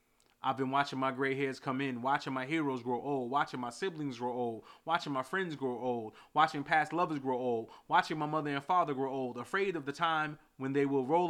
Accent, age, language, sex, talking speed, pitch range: American, 20-39, English, male, 230 wpm, 130-160 Hz